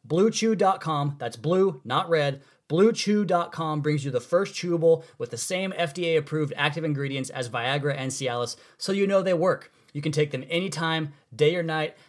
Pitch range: 140-170 Hz